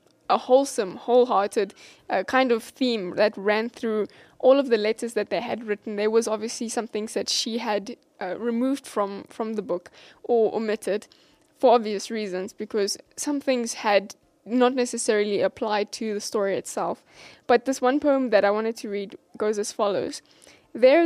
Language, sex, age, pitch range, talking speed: English, female, 10-29, 215-255 Hz, 175 wpm